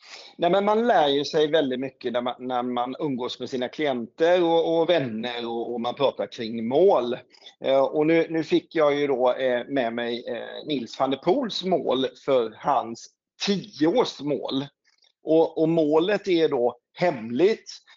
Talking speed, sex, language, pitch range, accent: 165 wpm, male, Swedish, 125-170 Hz, native